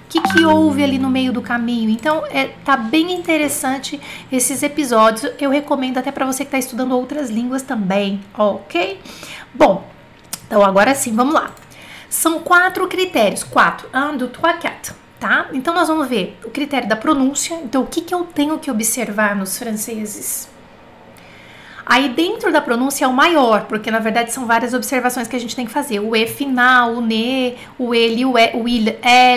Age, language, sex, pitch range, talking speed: 30-49, French, female, 235-285 Hz, 180 wpm